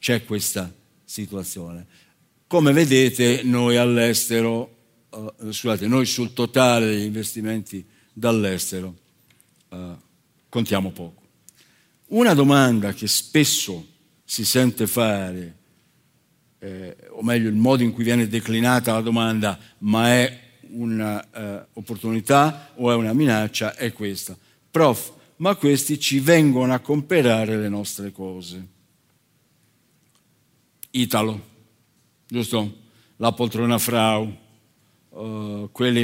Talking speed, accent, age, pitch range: 105 wpm, native, 60-79, 105-130 Hz